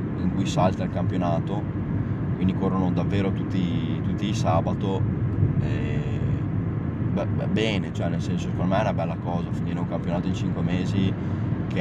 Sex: male